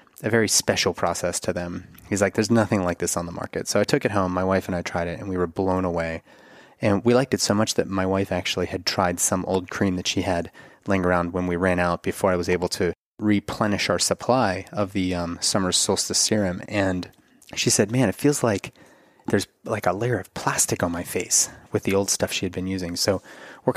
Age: 30-49